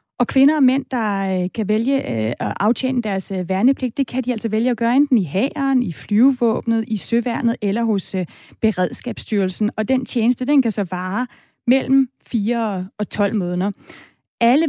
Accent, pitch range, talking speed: native, 210-250 Hz, 170 wpm